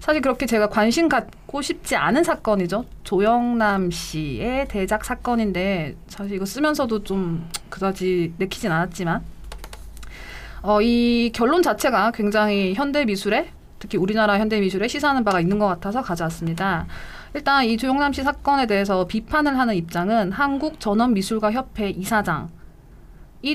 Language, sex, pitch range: Korean, female, 185-260 Hz